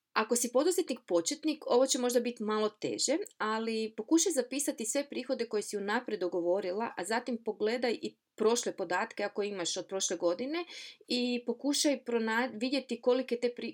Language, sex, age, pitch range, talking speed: Croatian, female, 30-49, 195-245 Hz, 160 wpm